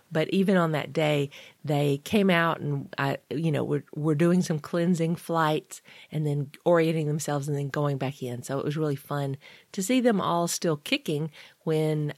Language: English